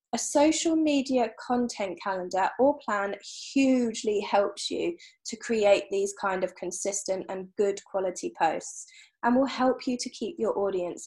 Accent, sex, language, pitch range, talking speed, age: British, female, English, 200-255 Hz, 150 wpm, 20-39